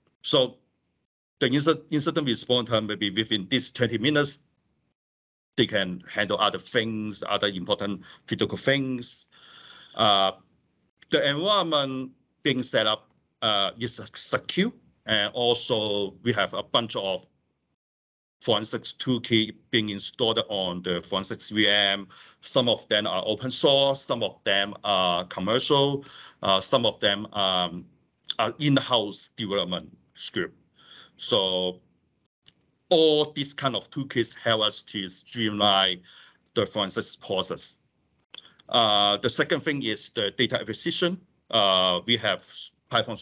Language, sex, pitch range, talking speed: English, male, 95-130 Hz, 125 wpm